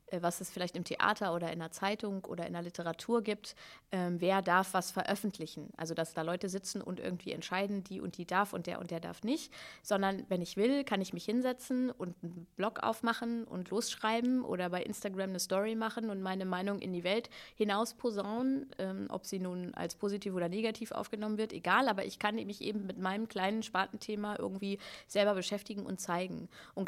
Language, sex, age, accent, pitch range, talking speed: German, female, 20-39, German, 170-210 Hz, 205 wpm